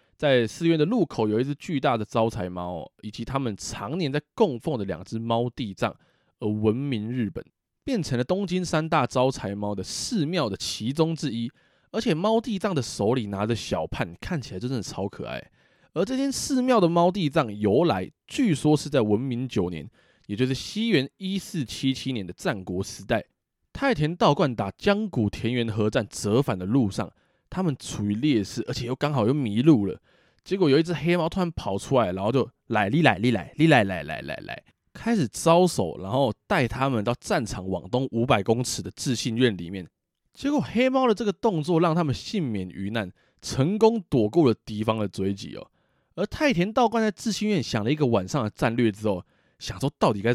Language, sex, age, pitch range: Chinese, male, 20-39, 110-165 Hz